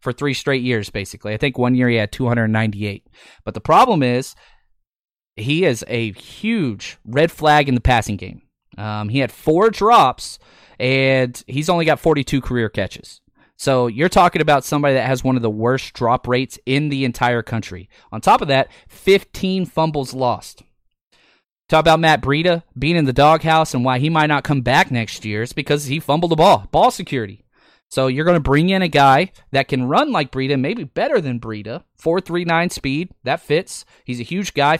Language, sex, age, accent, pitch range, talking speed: English, male, 30-49, American, 120-155 Hz, 195 wpm